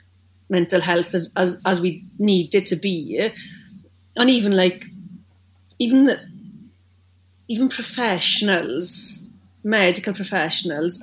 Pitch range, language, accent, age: 175-205 Hz, English, British, 30-49